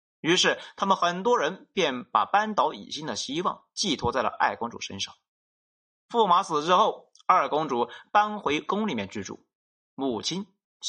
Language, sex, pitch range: Chinese, male, 165-250 Hz